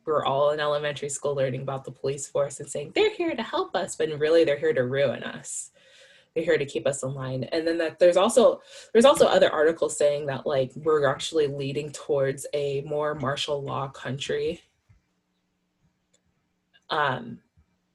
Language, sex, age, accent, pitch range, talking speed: English, female, 20-39, American, 145-180 Hz, 175 wpm